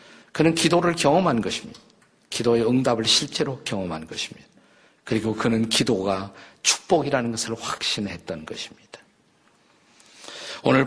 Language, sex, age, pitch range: Korean, male, 50-69, 115-155 Hz